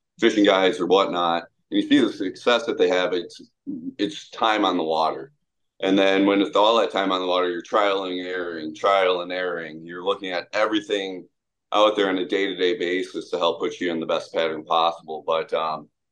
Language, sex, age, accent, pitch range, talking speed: English, male, 30-49, American, 90-105 Hz, 210 wpm